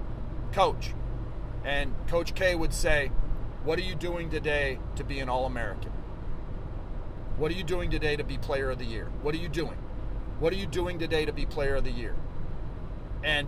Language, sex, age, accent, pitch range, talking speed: English, male, 40-59, American, 115-155 Hz, 190 wpm